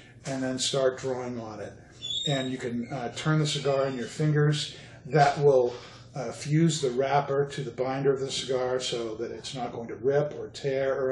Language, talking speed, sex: English, 205 wpm, male